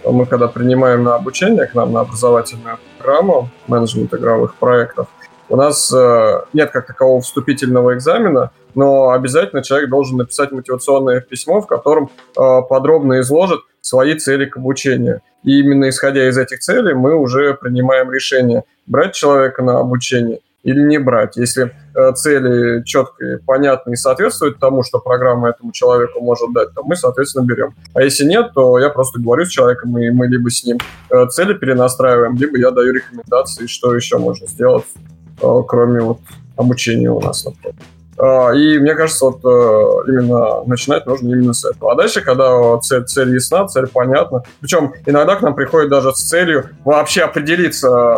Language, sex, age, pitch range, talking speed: Russian, male, 20-39, 125-140 Hz, 160 wpm